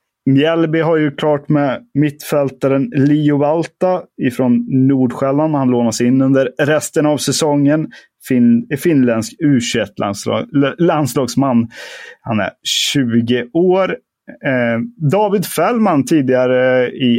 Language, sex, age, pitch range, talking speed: Swedish, male, 30-49, 120-160 Hz, 100 wpm